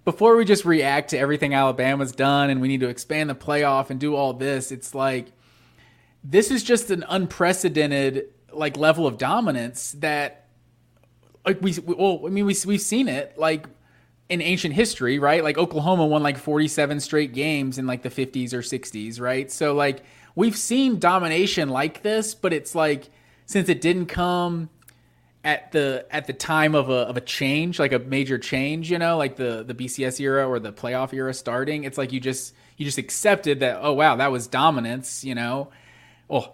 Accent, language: American, English